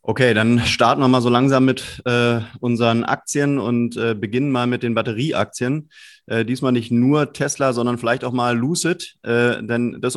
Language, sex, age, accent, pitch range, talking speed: German, male, 30-49, German, 110-130 Hz, 185 wpm